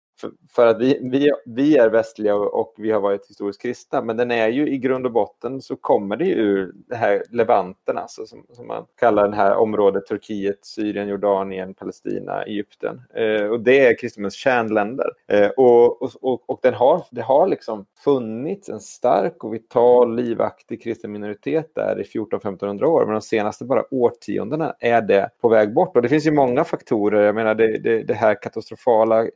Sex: male